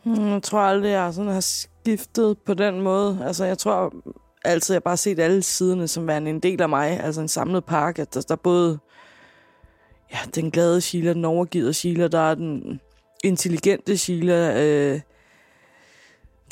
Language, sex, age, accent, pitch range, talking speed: Danish, female, 20-39, native, 155-190 Hz, 165 wpm